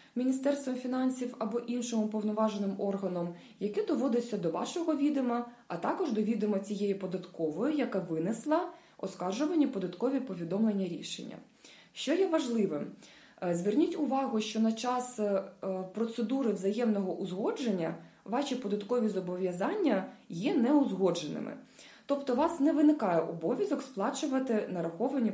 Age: 20-39